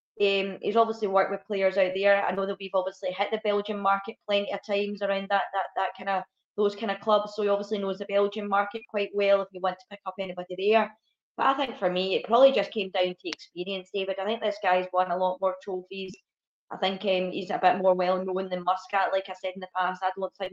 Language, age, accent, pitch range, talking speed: English, 20-39, British, 180-200 Hz, 265 wpm